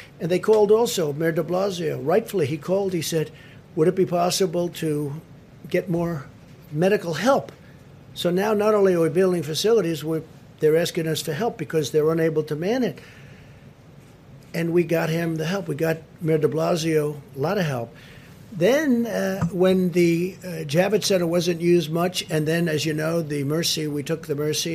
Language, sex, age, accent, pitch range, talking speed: English, male, 60-79, American, 145-180 Hz, 185 wpm